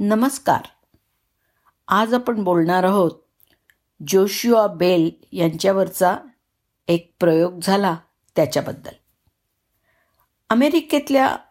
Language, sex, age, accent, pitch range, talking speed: Marathi, female, 50-69, native, 165-215 Hz, 70 wpm